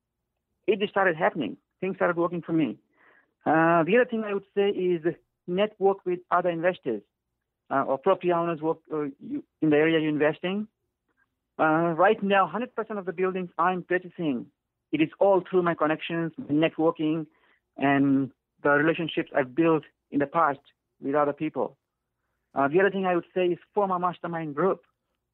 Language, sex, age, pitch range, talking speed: English, male, 50-69, 150-185 Hz, 165 wpm